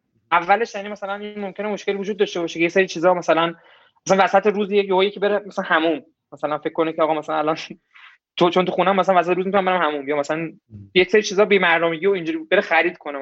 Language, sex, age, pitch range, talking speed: Persian, male, 20-39, 160-205 Hz, 230 wpm